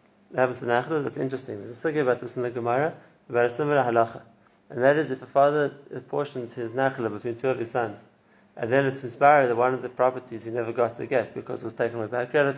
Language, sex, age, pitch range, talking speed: English, male, 30-49, 120-135 Hz, 235 wpm